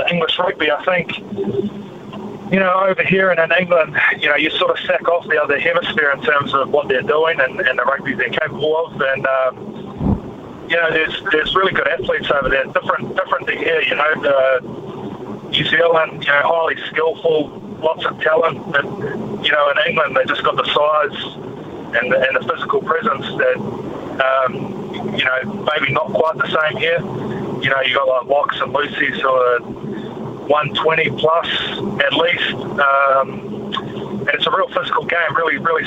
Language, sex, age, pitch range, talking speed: English, male, 30-49, 140-185 Hz, 185 wpm